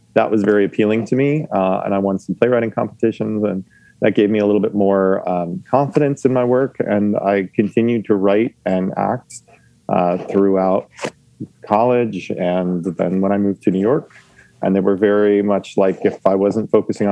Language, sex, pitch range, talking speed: English, male, 100-115 Hz, 190 wpm